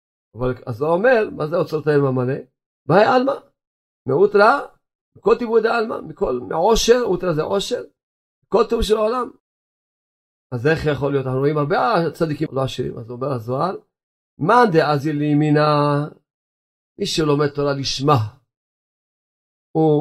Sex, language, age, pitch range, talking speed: male, Hebrew, 50-69, 130-165 Hz, 140 wpm